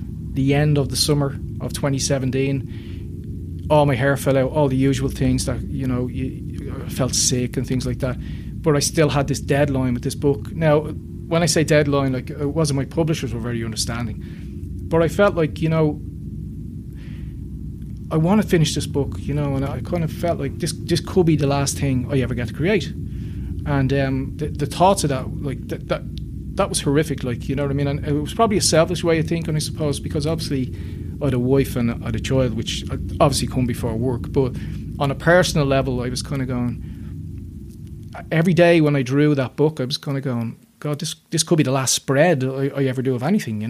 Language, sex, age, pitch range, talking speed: English, male, 30-49, 125-155 Hz, 225 wpm